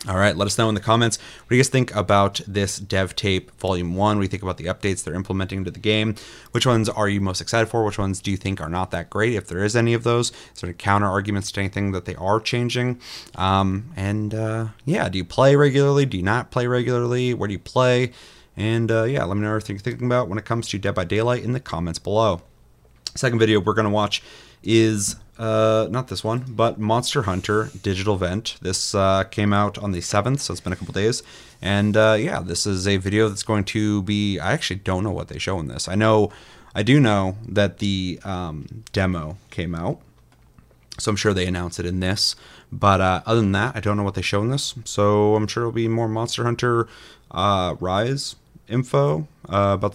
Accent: American